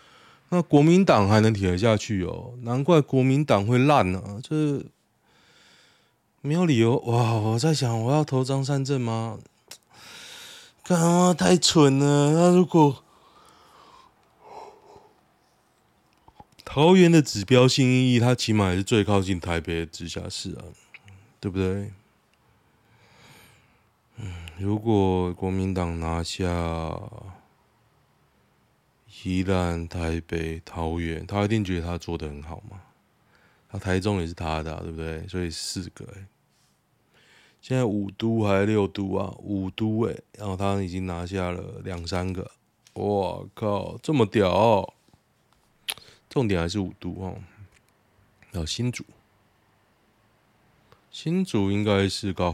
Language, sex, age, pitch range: Chinese, male, 20-39, 95-125 Hz